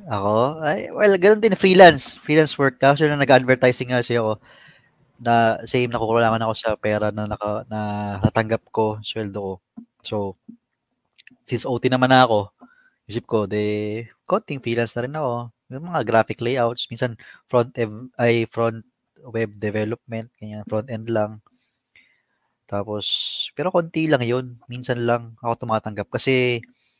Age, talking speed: 20-39, 145 wpm